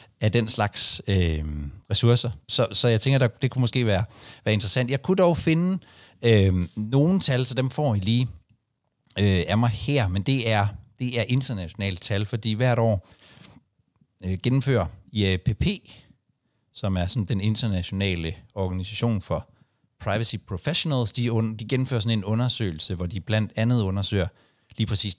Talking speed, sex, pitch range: 160 wpm, male, 100-125 Hz